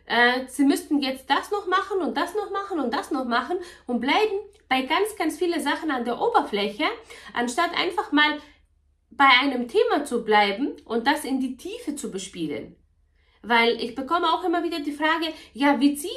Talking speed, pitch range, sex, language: 185 wpm, 230-335 Hz, female, German